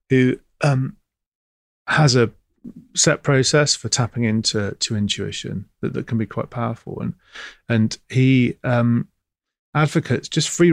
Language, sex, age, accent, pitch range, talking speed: English, male, 40-59, British, 105-130 Hz, 135 wpm